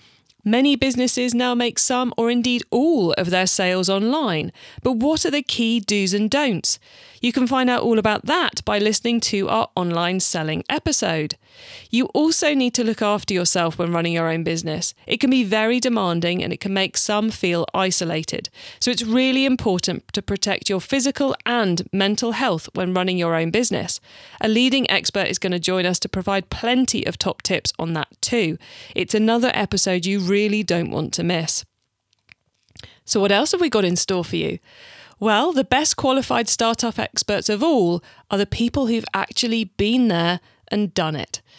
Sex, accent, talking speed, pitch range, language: female, British, 185 wpm, 180-245 Hz, English